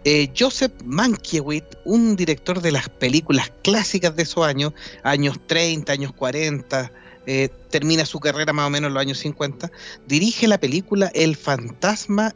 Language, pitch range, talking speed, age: Spanish, 145-205 Hz, 155 wpm, 40-59